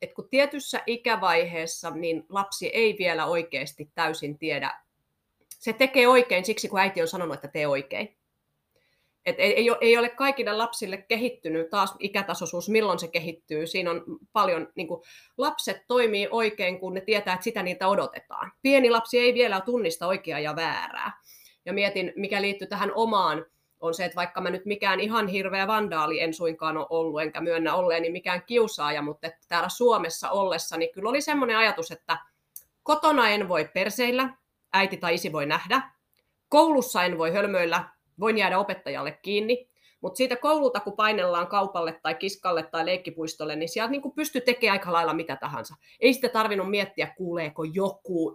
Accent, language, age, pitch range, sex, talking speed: native, Finnish, 30-49, 165-220 Hz, female, 165 wpm